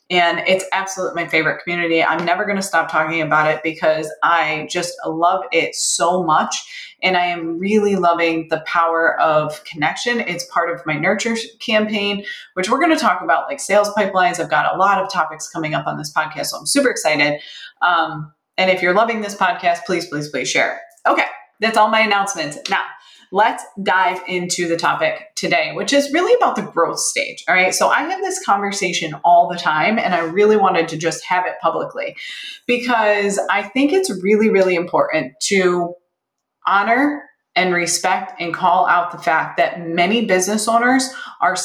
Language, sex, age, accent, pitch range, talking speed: English, female, 20-39, American, 170-220 Hz, 185 wpm